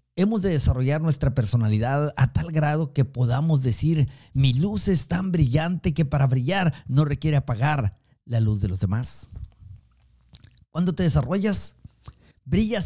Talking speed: 145 wpm